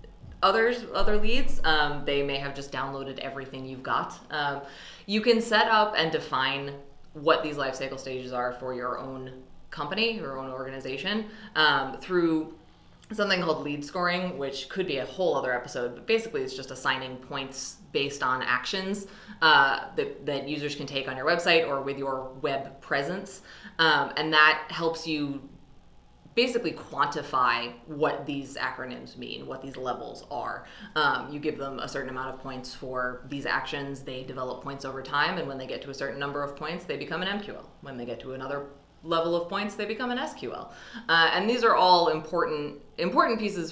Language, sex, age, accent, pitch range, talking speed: English, female, 20-39, American, 135-170 Hz, 185 wpm